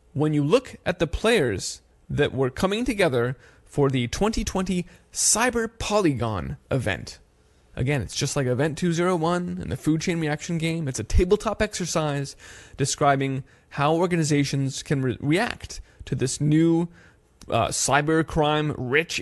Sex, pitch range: male, 130-165 Hz